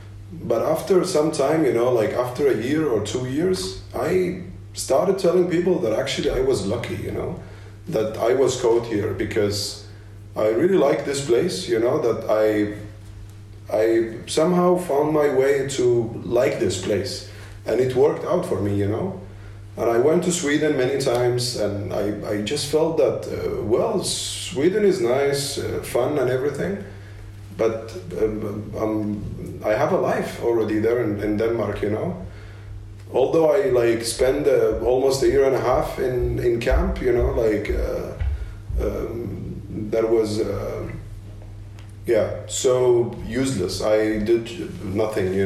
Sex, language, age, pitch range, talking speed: male, English, 30-49, 100-125 Hz, 160 wpm